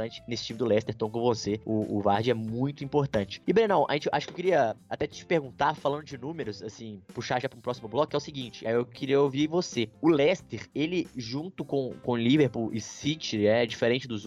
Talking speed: 230 wpm